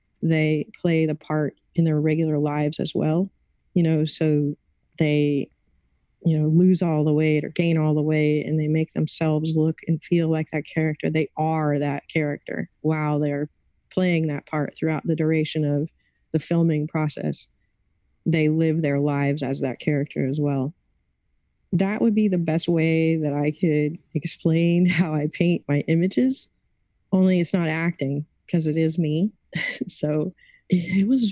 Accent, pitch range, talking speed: American, 150-175 Hz, 165 wpm